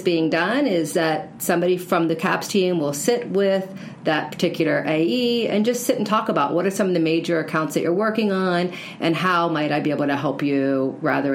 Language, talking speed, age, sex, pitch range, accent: English, 220 wpm, 40-59, female, 155-200 Hz, American